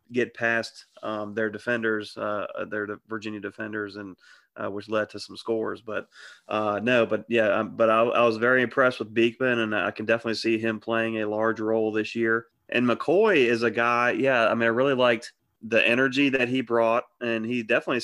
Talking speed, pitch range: 200 wpm, 110-120 Hz